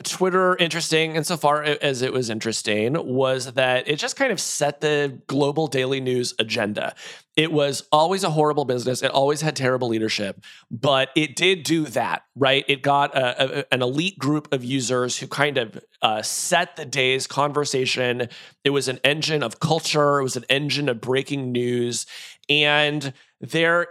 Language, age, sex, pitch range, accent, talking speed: English, 30-49, male, 130-165 Hz, American, 165 wpm